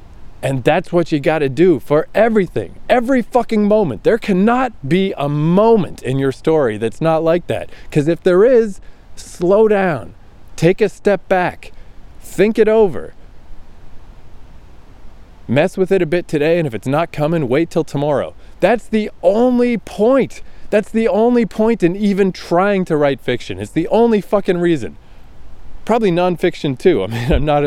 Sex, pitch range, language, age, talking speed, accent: male, 115-180 Hz, English, 20-39, 165 wpm, American